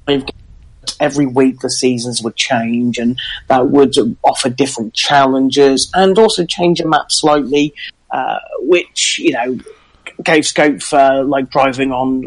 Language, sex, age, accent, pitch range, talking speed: English, male, 30-49, British, 125-150 Hz, 140 wpm